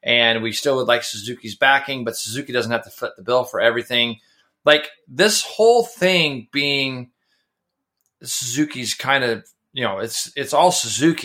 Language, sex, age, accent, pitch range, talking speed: English, male, 30-49, American, 120-165 Hz, 165 wpm